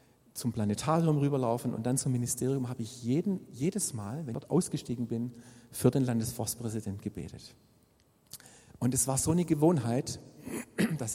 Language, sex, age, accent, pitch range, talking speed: German, male, 50-69, German, 120-150 Hz, 150 wpm